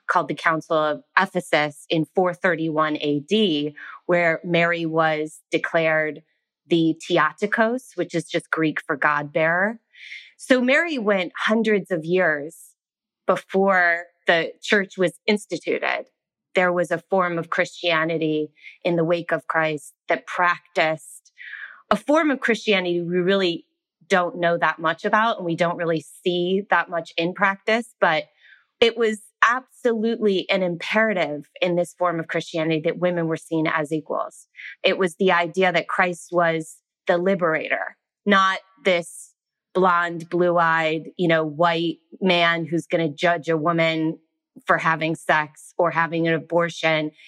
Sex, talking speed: female, 140 wpm